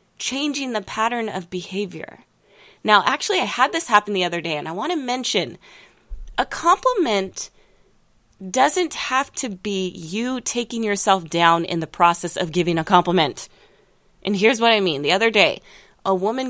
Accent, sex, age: American, female, 20-39